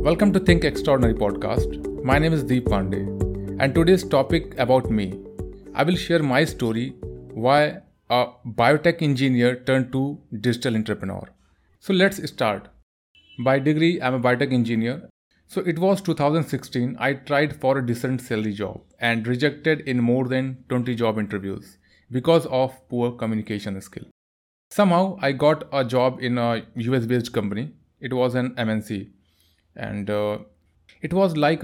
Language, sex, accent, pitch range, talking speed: Hindi, male, native, 100-140 Hz, 155 wpm